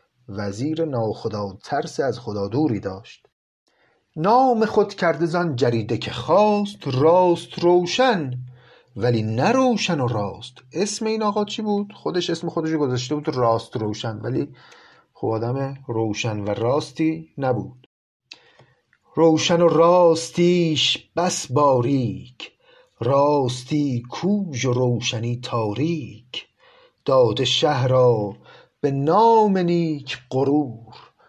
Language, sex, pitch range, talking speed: Persian, male, 115-170 Hz, 105 wpm